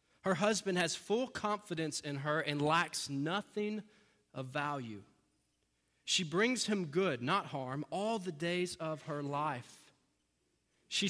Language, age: English, 30-49